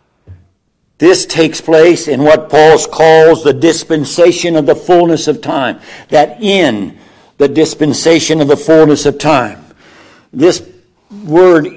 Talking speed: 125 wpm